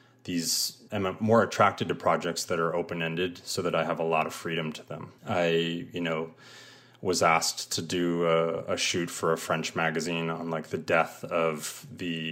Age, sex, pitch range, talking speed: 30-49, male, 85-100 Hz, 190 wpm